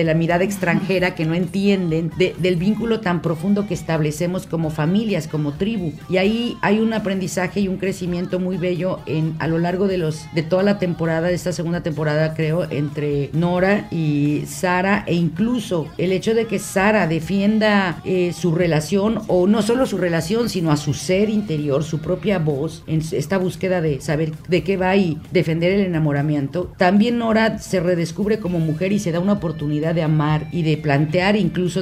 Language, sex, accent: Spanish, female, Mexican